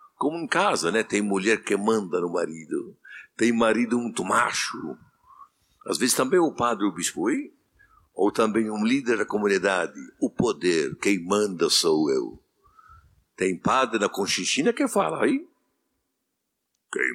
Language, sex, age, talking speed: Portuguese, male, 60-79, 145 wpm